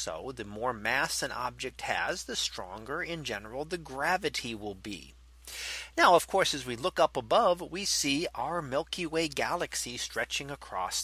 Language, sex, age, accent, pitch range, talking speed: English, male, 40-59, American, 125-170 Hz, 170 wpm